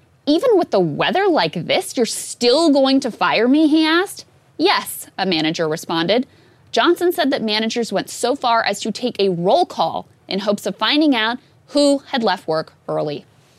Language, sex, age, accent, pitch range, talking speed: English, female, 20-39, American, 180-280 Hz, 180 wpm